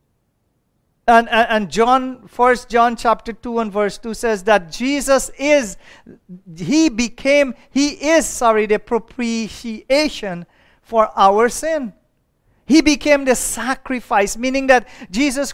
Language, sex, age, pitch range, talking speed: English, male, 40-59, 225-275 Hz, 115 wpm